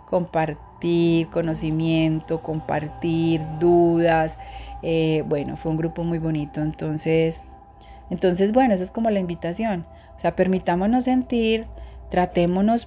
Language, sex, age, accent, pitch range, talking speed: Spanish, female, 30-49, Colombian, 160-195 Hz, 110 wpm